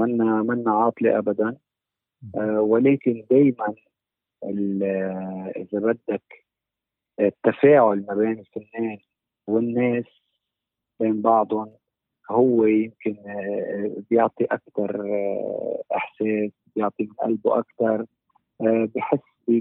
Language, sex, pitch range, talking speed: Arabic, male, 105-120 Hz, 85 wpm